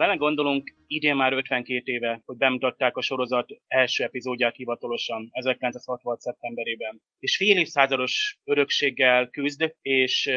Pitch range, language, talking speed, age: 125-145 Hz, Hungarian, 120 wpm, 30-49